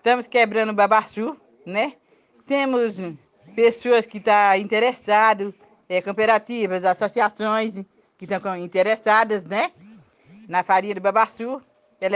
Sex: female